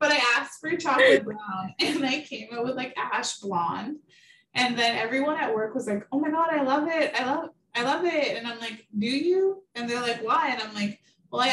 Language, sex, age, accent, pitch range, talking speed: English, female, 20-39, American, 205-270 Hz, 240 wpm